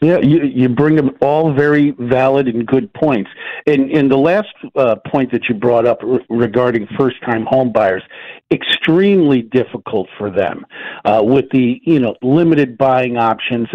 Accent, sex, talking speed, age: American, male, 170 wpm, 50-69